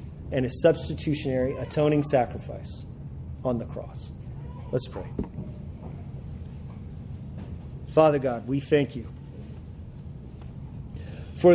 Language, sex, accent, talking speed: English, male, American, 85 wpm